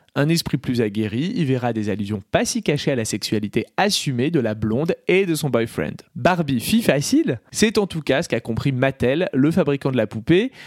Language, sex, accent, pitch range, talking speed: French, male, French, 125-175 Hz, 215 wpm